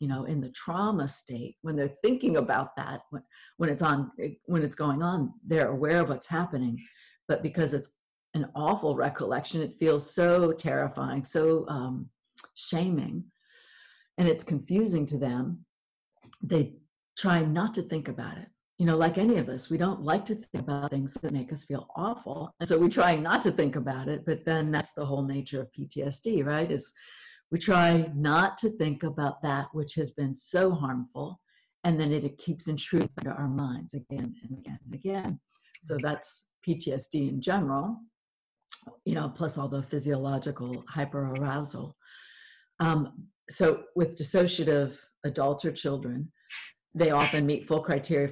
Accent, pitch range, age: American, 140-170 Hz, 50-69